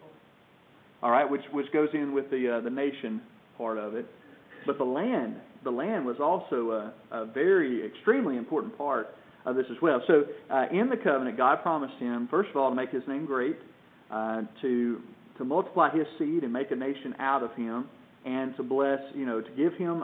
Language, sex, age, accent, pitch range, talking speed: English, male, 40-59, American, 120-150 Hz, 205 wpm